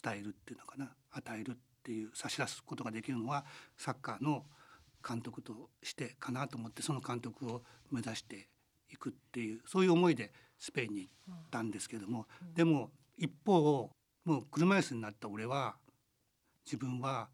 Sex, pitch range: male, 120-160 Hz